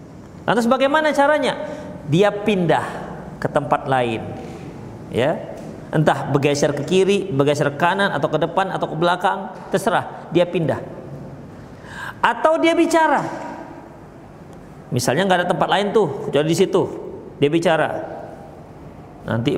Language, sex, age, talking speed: Indonesian, male, 40-59, 125 wpm